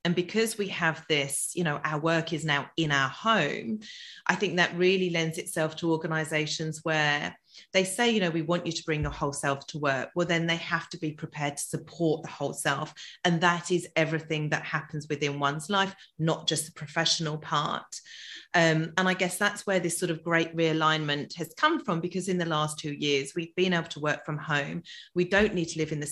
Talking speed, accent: 225 wpm, British